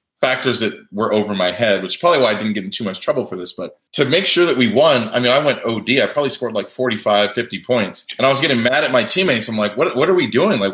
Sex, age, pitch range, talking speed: male, 20-39, 105-135 Hz, 300 wpm